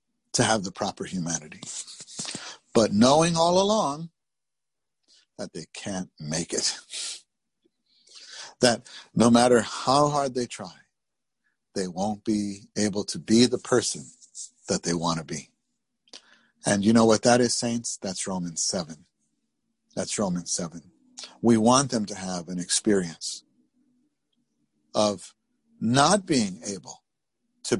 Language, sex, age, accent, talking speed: English, male, 50-69, American, 125 wpm